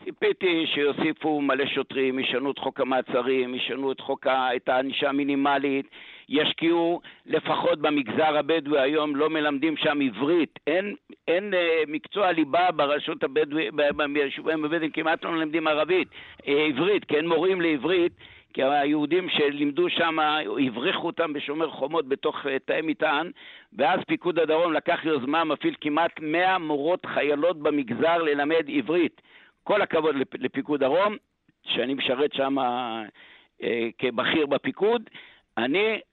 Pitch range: 135-165 Hz